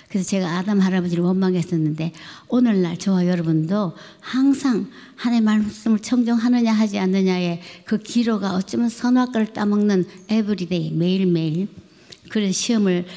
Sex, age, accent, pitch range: male, 60-79, native, 165-205 Hz